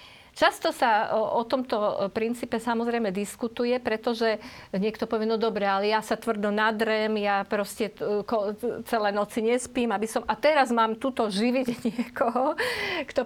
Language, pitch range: Slovak, 210-255 Hz